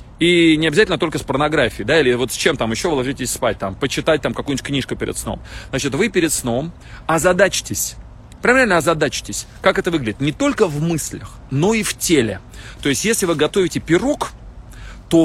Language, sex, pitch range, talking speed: Russian, male, 120-175 Hz, 190 wpm